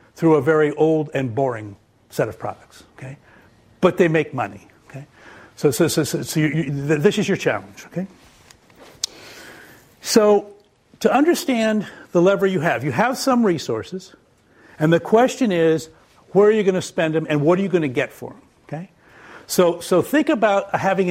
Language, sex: English, male